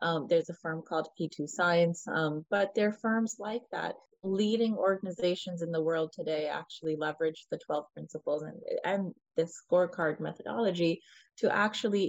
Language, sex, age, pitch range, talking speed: English, female, 20-39, 160-190 Hz, 160 wpm